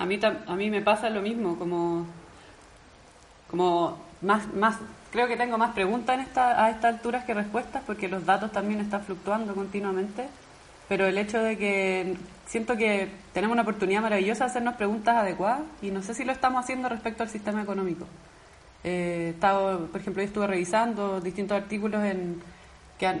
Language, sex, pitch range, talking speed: Spanish, female, 185-220 Hz, 175 wpm